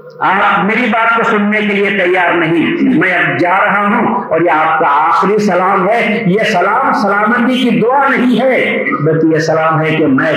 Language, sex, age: Urdu, male, 50-69